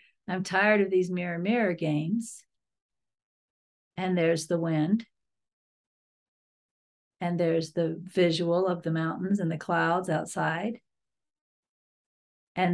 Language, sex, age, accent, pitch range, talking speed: English, female, 50-69, American, 175-215 Hz, 110 wpm